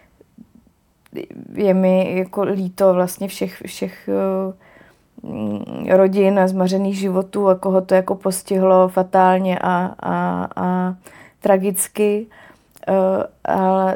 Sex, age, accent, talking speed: female, 20-39, native, 95 wpm